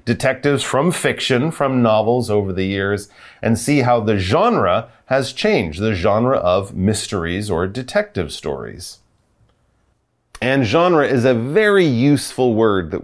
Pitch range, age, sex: 100-150 Hz, 30-49, male